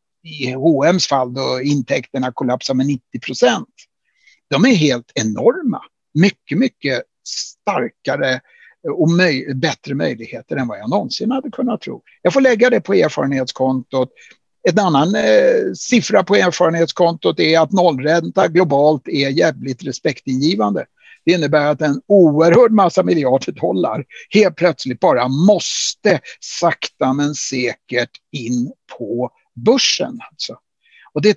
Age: 60-79